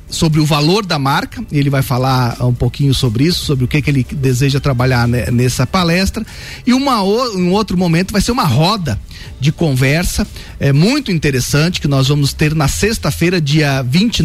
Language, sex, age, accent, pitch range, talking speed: Portuguese, male, 40-59, Brazilian, 140-185 Hz, 185 wpm